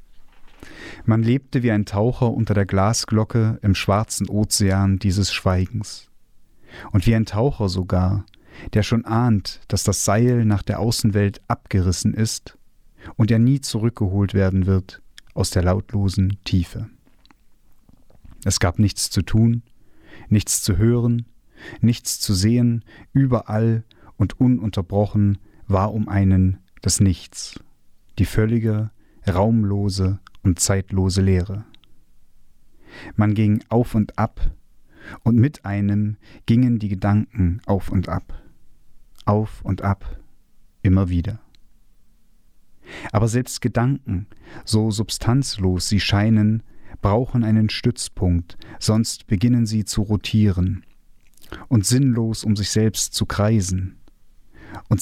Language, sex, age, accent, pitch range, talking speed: German, male, 40-59, German, 95-115 Hz, 115 wpm